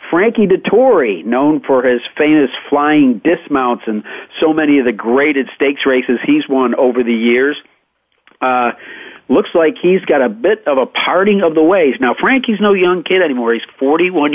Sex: male